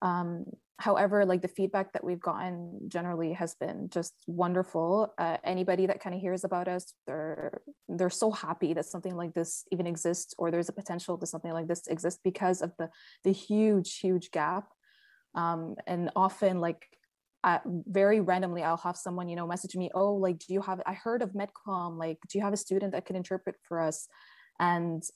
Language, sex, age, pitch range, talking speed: English, female, 20-39, 175-195 Hz, 195 wpm